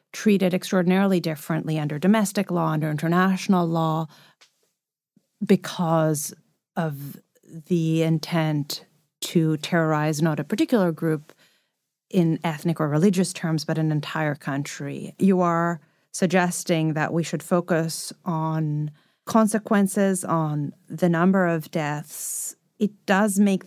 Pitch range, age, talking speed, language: 160-195 Hz, 30-49, 115 wpm, English